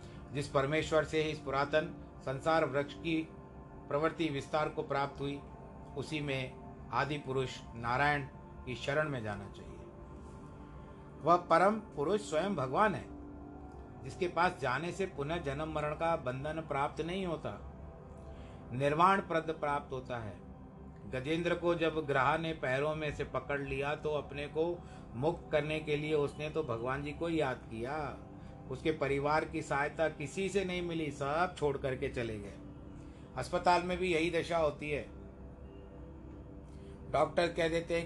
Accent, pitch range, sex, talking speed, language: native, 125-155 Hz, male, 150 wpm, Hindi